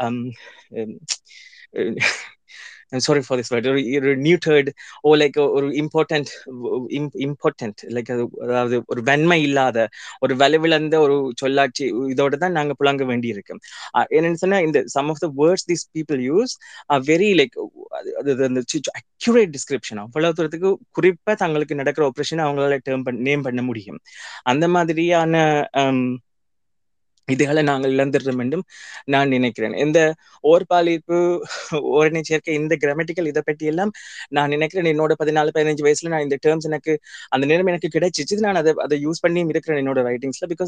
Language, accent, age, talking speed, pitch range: Tamil, native, 20-39, 160 wpm, 135-165 Hz